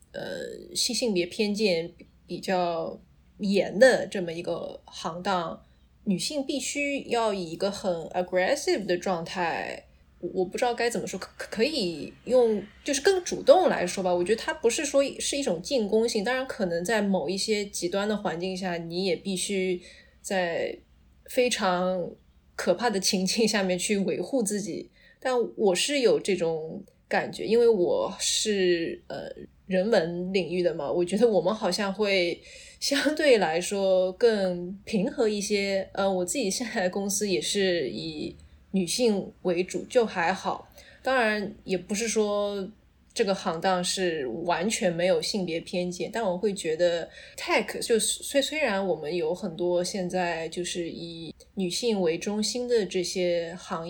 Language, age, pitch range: Chinese, 20-39, 180-230 Hz